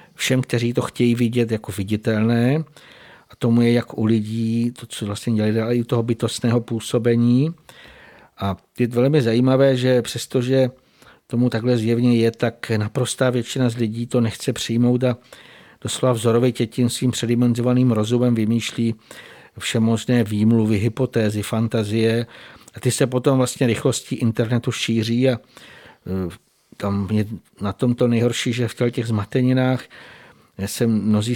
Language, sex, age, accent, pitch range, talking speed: Czech, male, 50-69, native, 115-125 Hz, 140 wpm